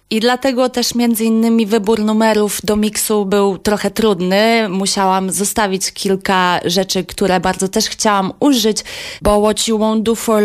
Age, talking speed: 20-39, 155 wpm